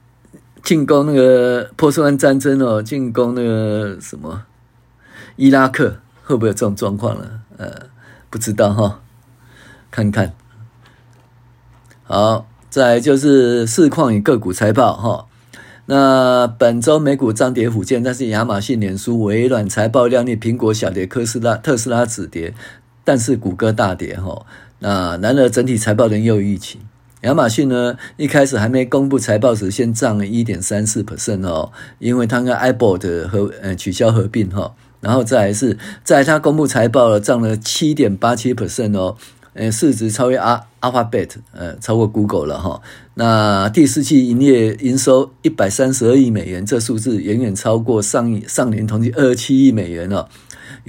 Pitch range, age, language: 105-130 Hz, 50-69, Chinese